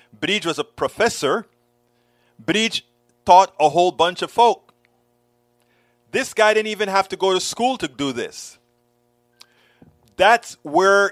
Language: English